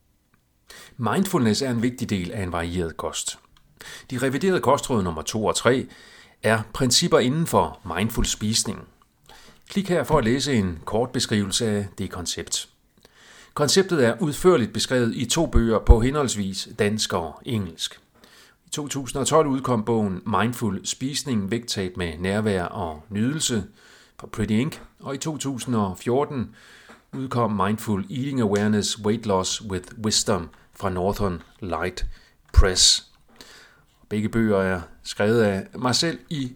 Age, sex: 40-59, male